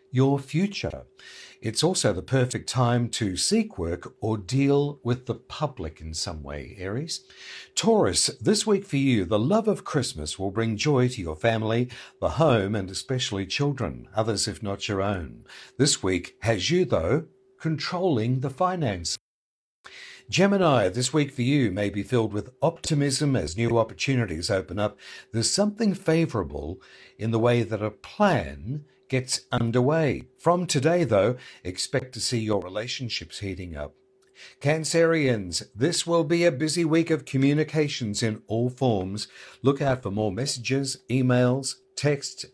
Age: 60-79